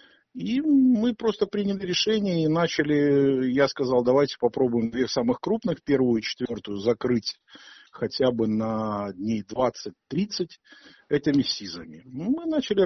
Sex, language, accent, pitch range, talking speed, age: male, Ukrainian, native, 120-170 Hz, 125 wpm, 50-69